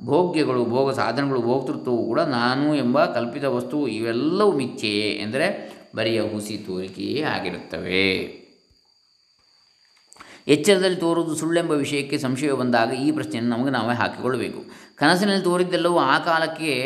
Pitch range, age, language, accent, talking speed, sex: 115-155 Hz, 20-39, Kannada, native, 115 wpm, male